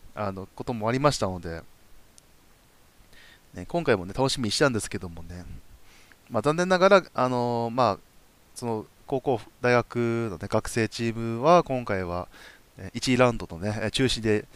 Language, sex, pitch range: Japanese, male, 95-140 Hz